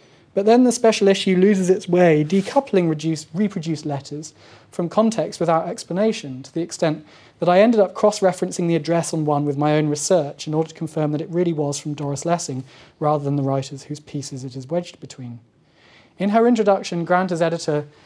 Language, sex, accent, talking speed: English, male, British, 195 wpm